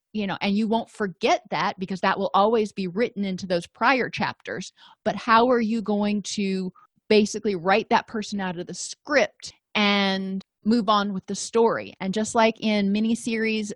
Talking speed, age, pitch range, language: 190 wpm, 30-49, 190-225 Hz, English